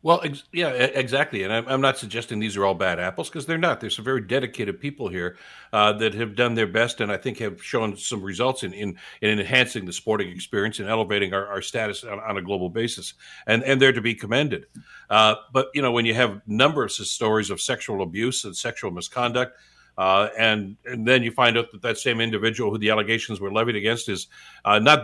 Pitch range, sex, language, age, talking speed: 110-130 Hz, male, English, 60-79, 230 wpm